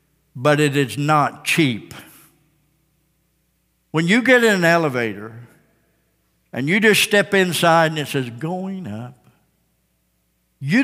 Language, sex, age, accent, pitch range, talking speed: English, male, 60-79, American, 120-185 Hz, 120 wpm